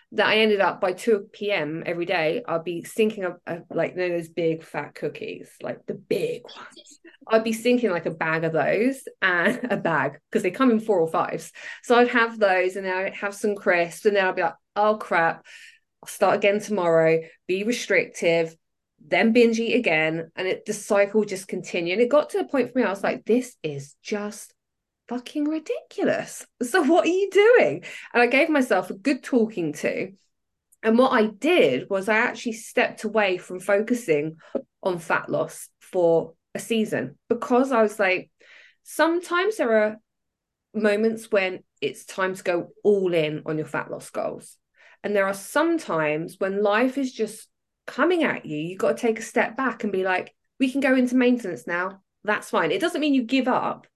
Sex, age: female, 20-39